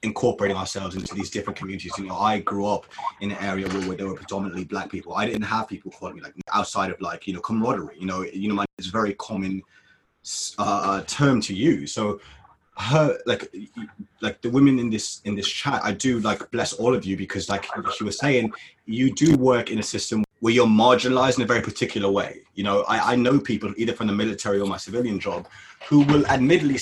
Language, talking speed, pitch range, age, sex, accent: English, 225 wpm, 100-130 Hz, 20-39, male, British